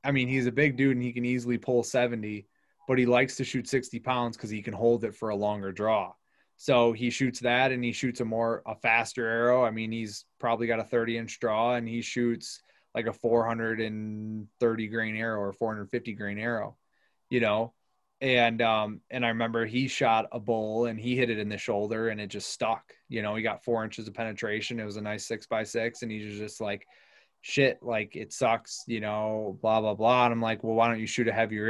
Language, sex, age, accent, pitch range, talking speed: English, male, 20-39, American, 110-125 Hz, 230 wpm